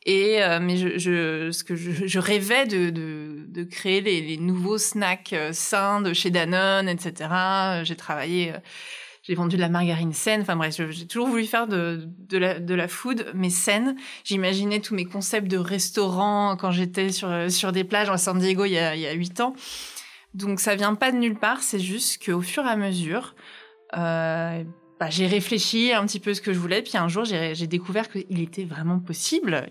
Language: French